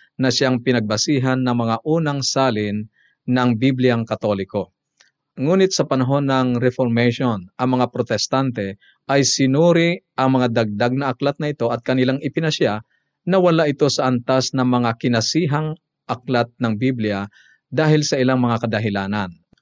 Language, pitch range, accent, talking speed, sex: Filipino, 115-140 Hz, native, 140 wpm, male